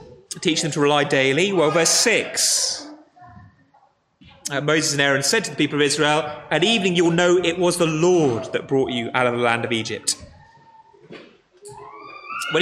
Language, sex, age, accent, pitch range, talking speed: English, male, 30-49, British, 145-195 Hz, 175 wpm